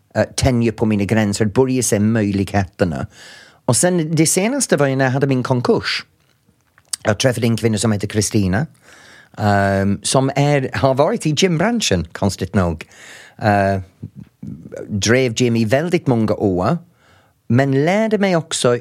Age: 40-59